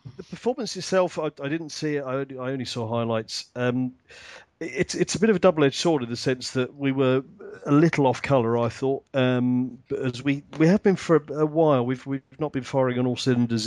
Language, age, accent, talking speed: English, 40-59, British, 235 wpm